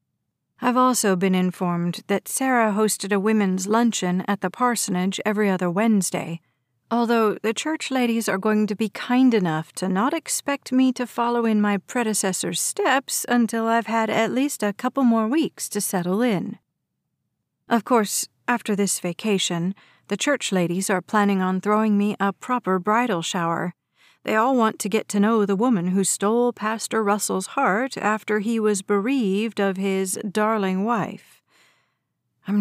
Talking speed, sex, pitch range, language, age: 160 wpm, female, 185-225 Hz, English, 40-59